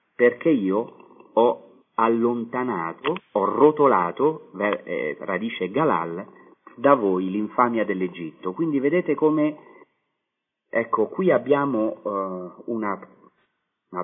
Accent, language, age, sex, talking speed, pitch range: native, Italian, 40-59, male, 95 wpm, 90-125 Hz